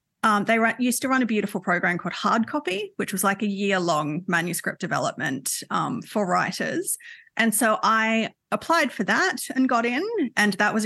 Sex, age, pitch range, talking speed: female, 30-49, 190-235 Hz, 190 wpm